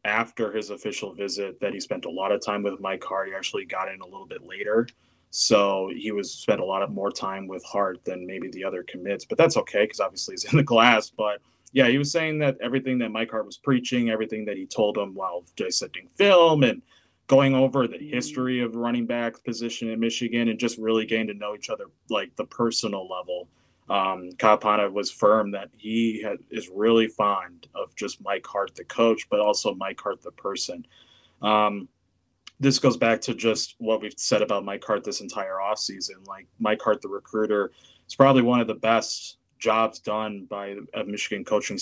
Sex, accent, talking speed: male, American, 210 wpm